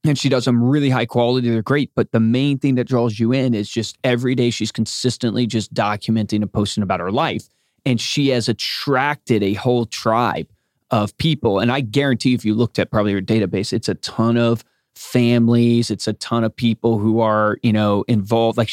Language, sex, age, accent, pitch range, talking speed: English, male, 30-49, American, 110-135 Hz, 205 wpm